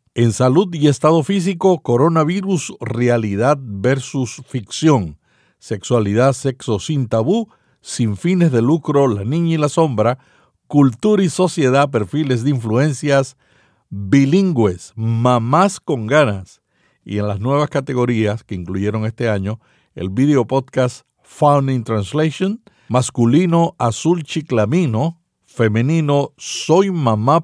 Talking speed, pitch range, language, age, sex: 115 wpm, 115-155 Hz, Spanish, 60-79, male